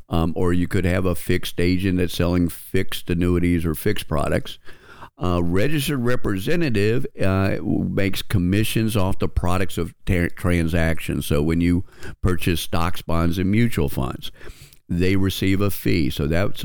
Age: 50-69